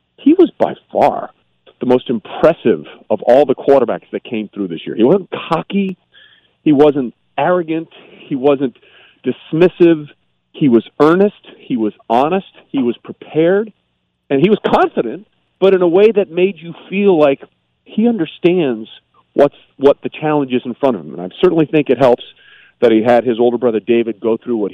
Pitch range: 105-150 Hz